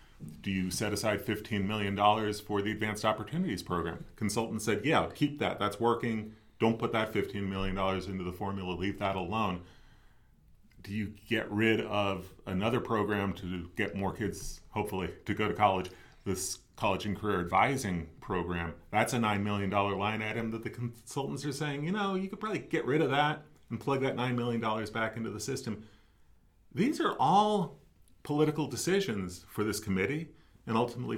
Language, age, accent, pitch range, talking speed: English, 30-49, American, 95-125 Hz, 175 wpm